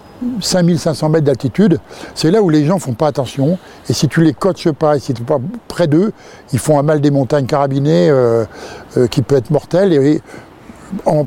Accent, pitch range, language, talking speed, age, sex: French, 140-180 Hz, French, 215 wpm, 60-79, male